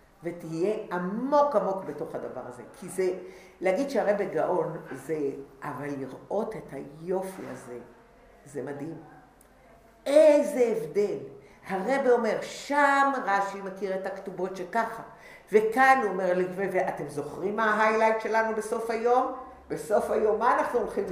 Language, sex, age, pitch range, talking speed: English, female, 50-69, 190-285 Hz, 125 wpm